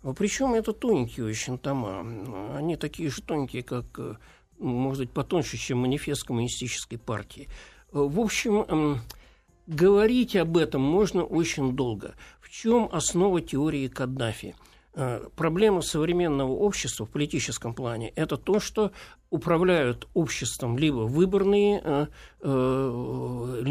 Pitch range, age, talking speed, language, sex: 130-180 Hz, 60-79, 115 wpm, Russian, male